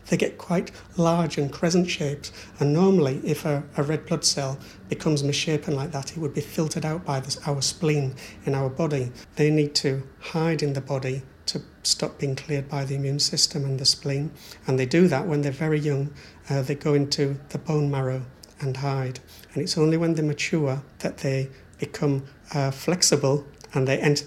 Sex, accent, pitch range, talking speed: male, British, 135-155 Hz, 200 wpm